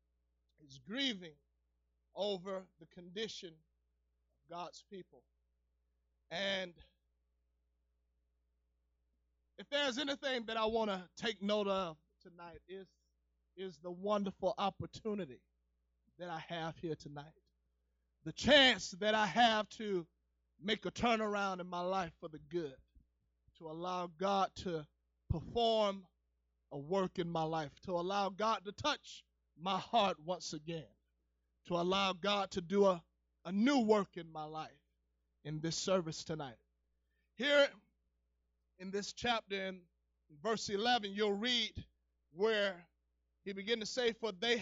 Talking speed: 130 wpm